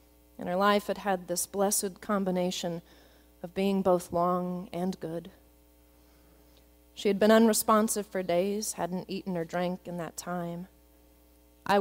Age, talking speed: 30-49, 140 wpm